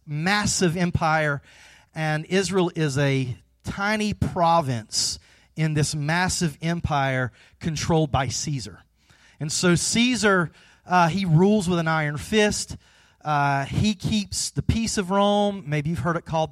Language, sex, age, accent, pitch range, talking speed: English, male, 40-59, American, 130-170 Hz, 135 wpm